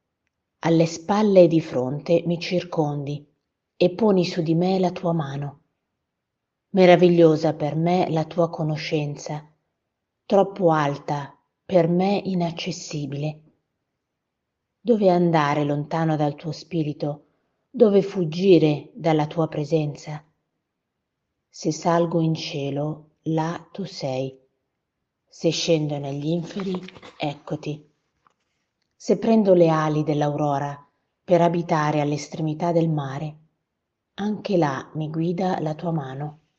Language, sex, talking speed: Italian, female, 110 wpm